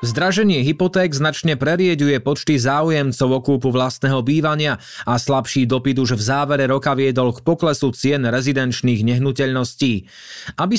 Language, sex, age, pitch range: Slovak, male, 20-39, 130-160 Hz